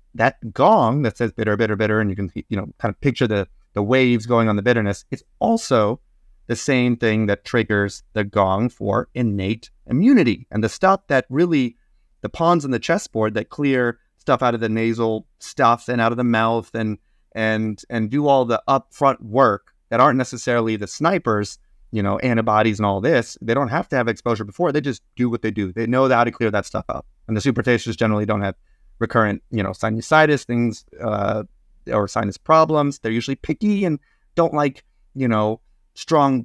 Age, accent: 30-49, American